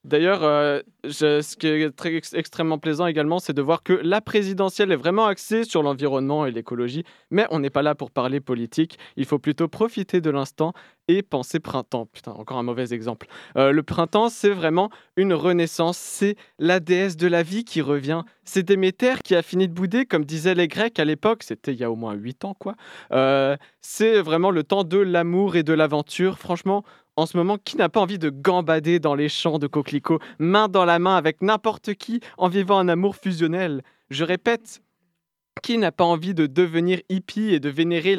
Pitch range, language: 145-190 Hz, French